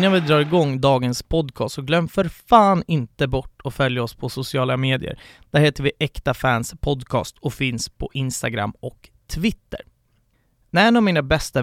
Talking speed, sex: 180 wpm, male